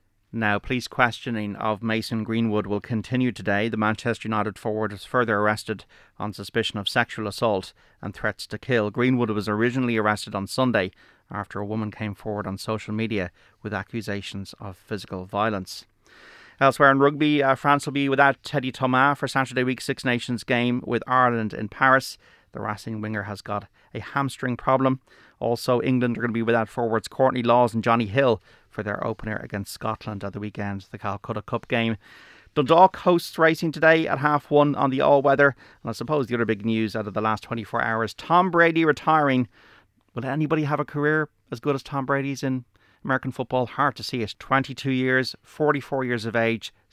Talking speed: 185 wpm